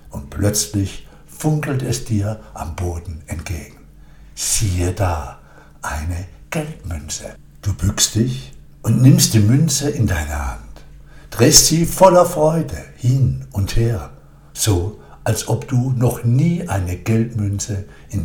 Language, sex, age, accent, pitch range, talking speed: German, male, 60-79, German, 90-135 Hz, 125 wpm